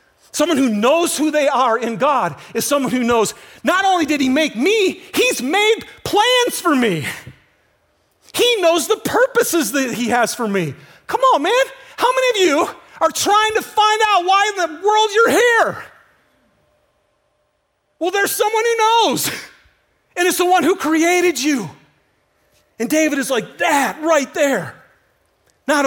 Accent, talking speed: American, 160 wpm